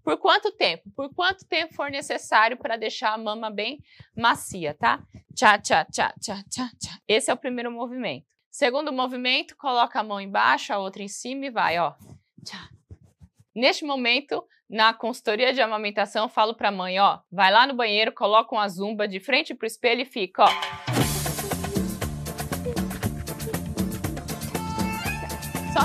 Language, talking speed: Portuguese, 160 wpm